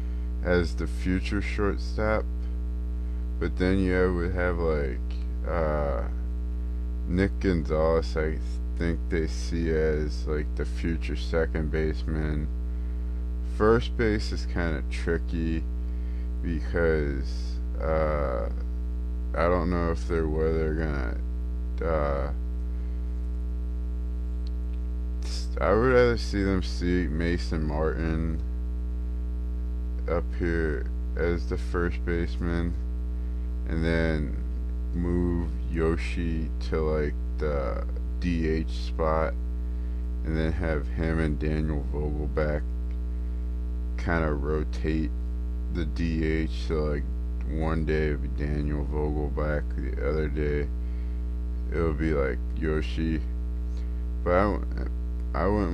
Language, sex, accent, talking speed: English, male, American, 100 wpm